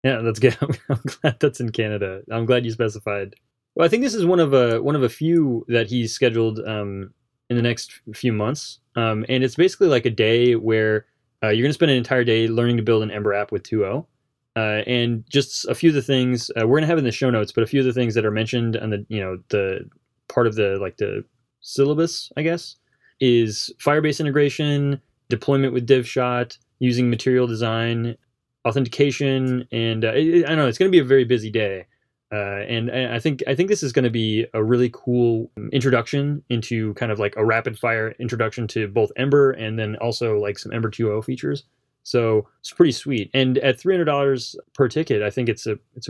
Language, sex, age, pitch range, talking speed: English, male, 20-39, 115-135 Hz, 220 wpm